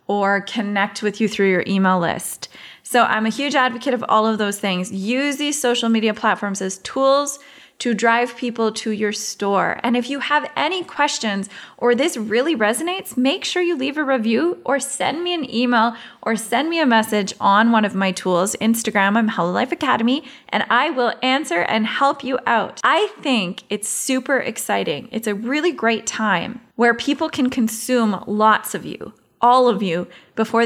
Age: 20-39